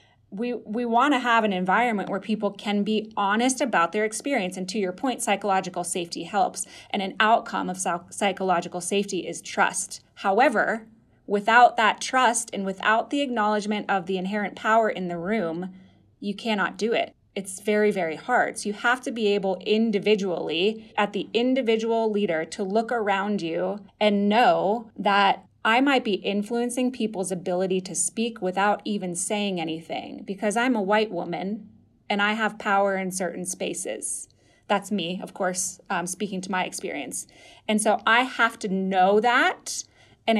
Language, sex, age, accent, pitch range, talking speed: English, female, 20-39, American, 190-230 Hz, 170 wpm